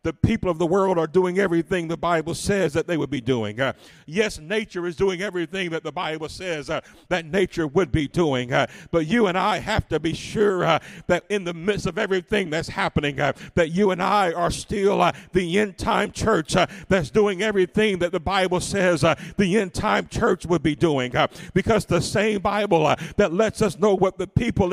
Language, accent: English, American